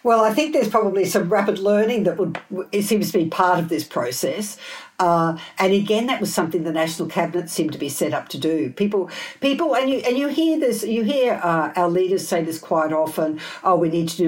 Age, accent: 60-79, Australian